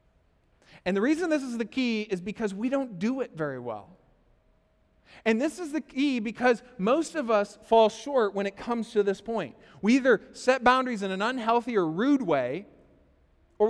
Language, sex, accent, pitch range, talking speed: English, male, American, 155-220 Hz, 190 wpm